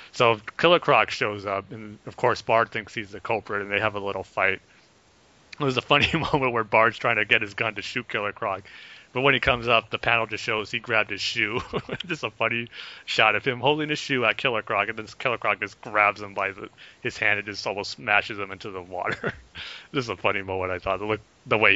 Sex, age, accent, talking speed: male, 30-49, American, 235 wpm